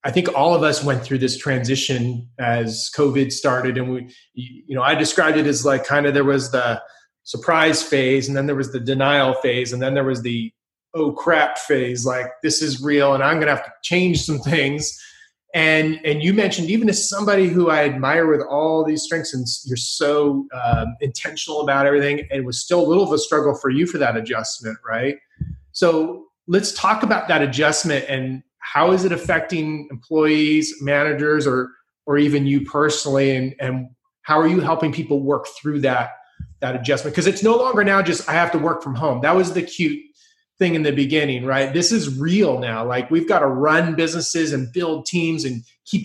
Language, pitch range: English, 135-170 Hz